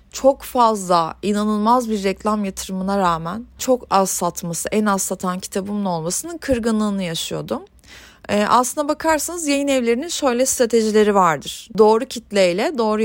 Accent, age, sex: native, 30-49, female